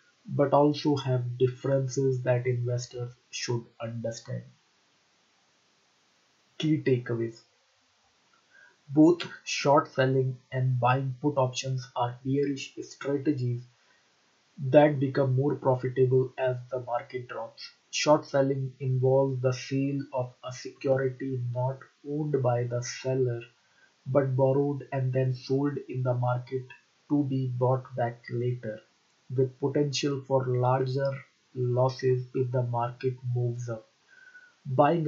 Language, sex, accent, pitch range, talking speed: English, male, Indian, 125-140 Hz, 110 wpm